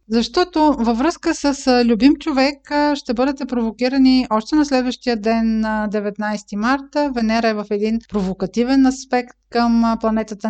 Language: Bulgarian